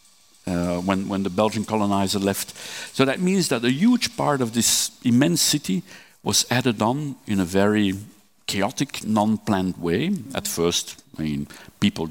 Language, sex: Finnish, male